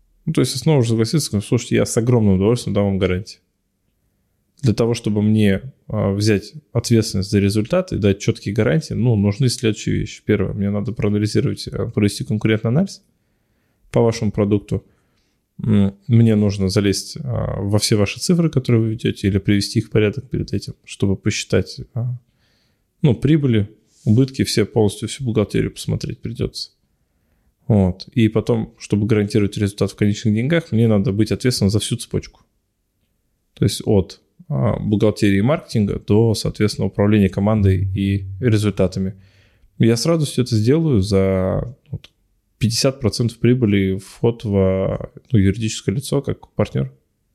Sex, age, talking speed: male, 20-39, 140 wpm